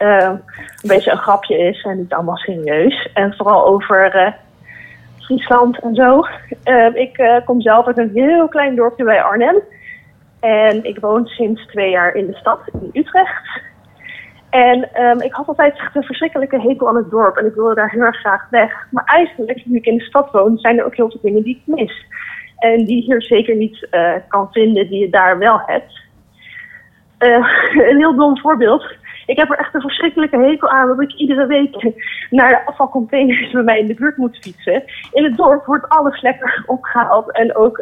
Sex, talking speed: female, 200 wpm